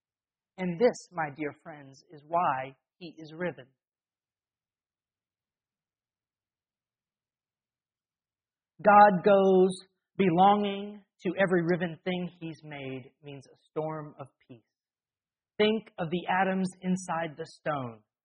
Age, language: 40-59, English